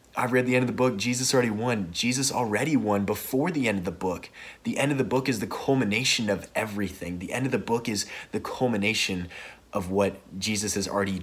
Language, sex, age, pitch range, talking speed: English, male, 20-39, 100-115 Hz, 225 wpm